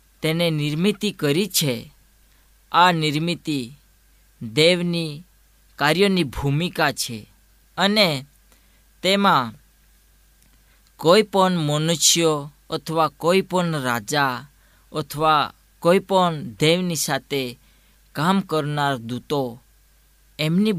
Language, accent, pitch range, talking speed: Gujarati, native, 130-175 Hz, 65 wpm